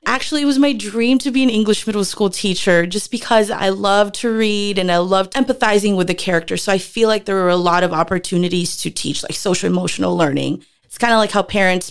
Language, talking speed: English, 235 wpm